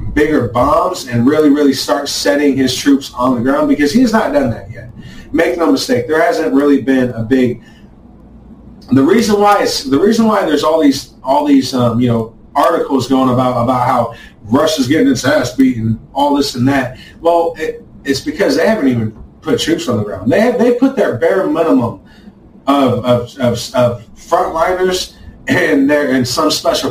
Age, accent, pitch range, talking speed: 30-49, American, 125-165 Hz, 185 wpm